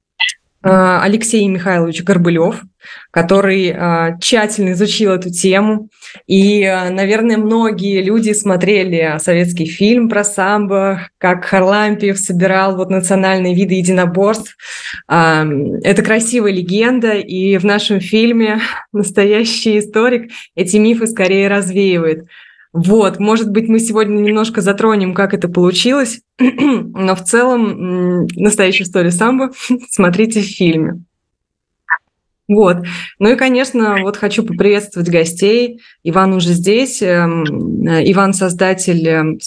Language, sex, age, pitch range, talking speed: Russian, female, 20-39, 180-215 Hz, 105 wpm